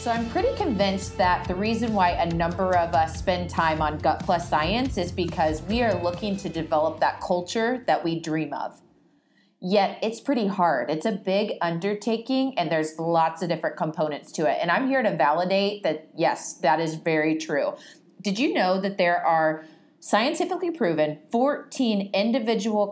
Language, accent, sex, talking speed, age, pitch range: English, American, female, 180 wpm, 30-49, 160-210 Hz